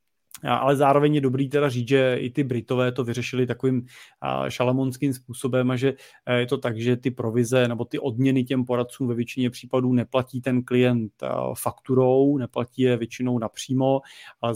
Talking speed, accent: 165 wpm, native